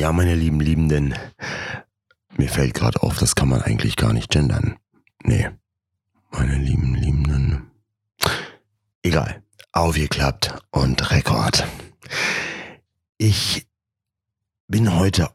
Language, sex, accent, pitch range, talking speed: German, male, German, 75-105 Hz, 100 wpm